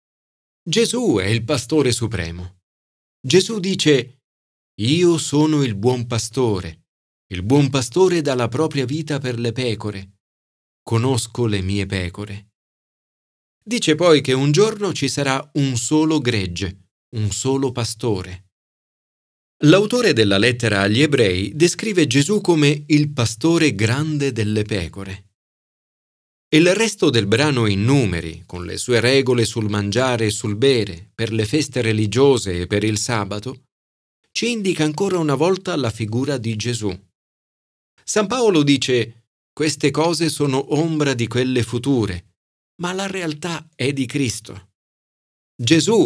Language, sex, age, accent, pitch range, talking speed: Italian, male, 40-59, native, 105-150 Hz, 135 wpm